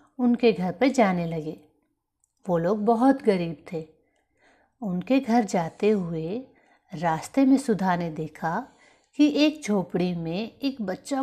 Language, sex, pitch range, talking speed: Hindi, female, 175-230 Hz, 135 wpm